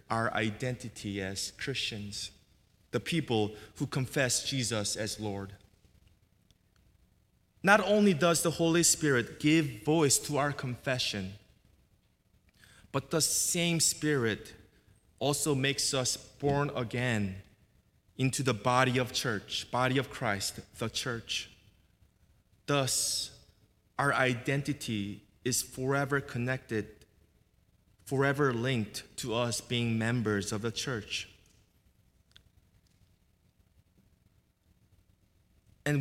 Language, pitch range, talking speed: English, 100-130 Hz, 95 wpm